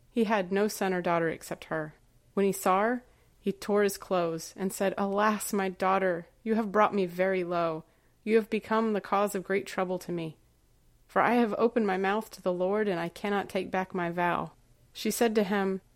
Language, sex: English, female